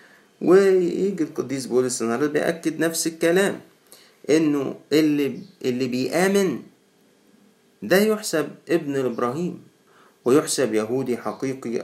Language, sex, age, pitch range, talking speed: Arabic, male, 50-69, 120-170 Hz, 80 wpm